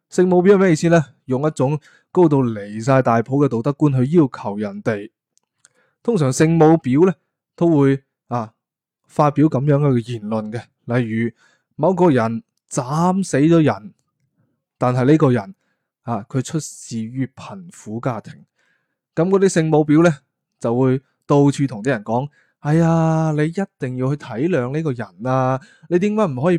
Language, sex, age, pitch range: Chinese, male, 20-39, 120-160 Hz